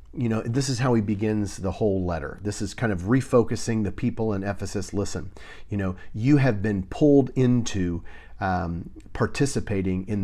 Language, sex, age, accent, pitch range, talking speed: English, male, 40-59, American, 95-120 Hz, 175 wpm